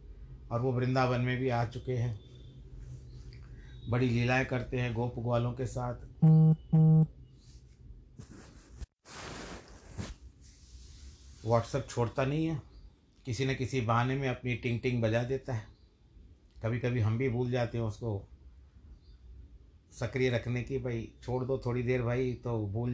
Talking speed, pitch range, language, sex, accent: 135 wpm, 85-130 Hz, Hindi, male, native